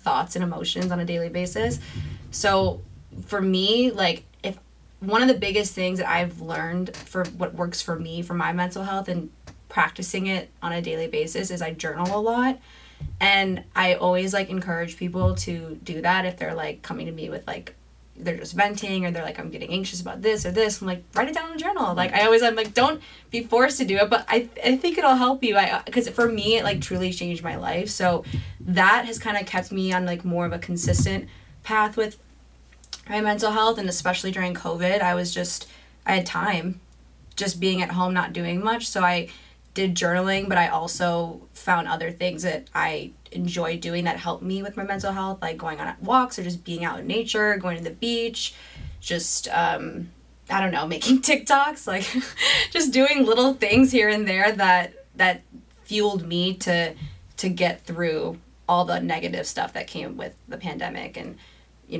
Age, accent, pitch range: 20-39, American, 170-210 Hz